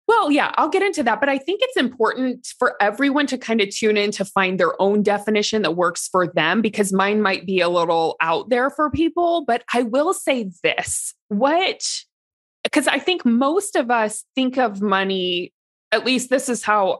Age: 20-39